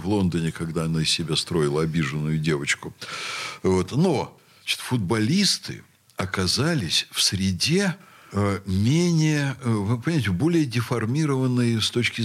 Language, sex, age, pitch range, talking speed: Russian, male, 60-79, 95-130 Hz, 120 wpm